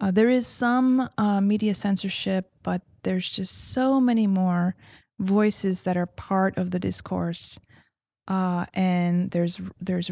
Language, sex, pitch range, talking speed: English, female, 170-195 Hz, 140 wpm